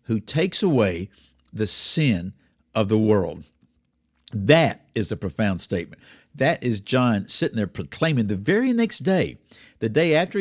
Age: 60-79